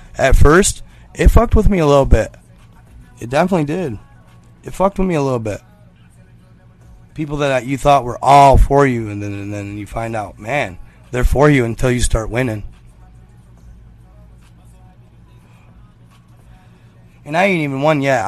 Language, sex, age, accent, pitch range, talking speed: English, male, 30-49, American, 100-140 Hz, 160 wpm